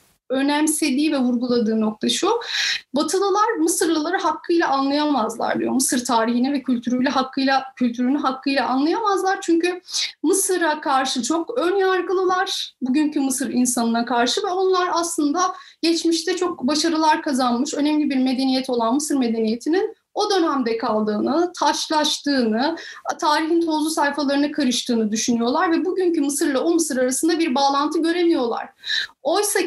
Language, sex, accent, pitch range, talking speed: Turkish, female, native, 240-330 Hz, 120 wpm